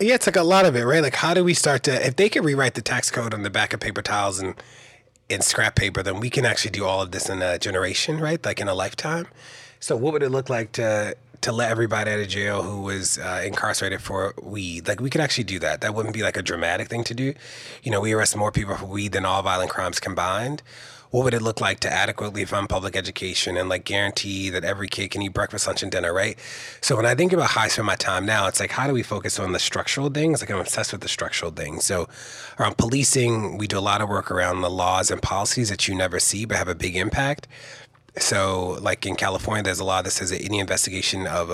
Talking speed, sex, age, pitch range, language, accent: 260 wpm, male, 30-49, 95-125 Hz, English, American